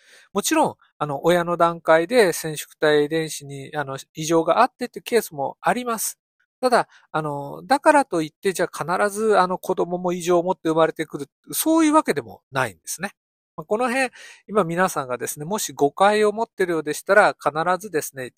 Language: Japanese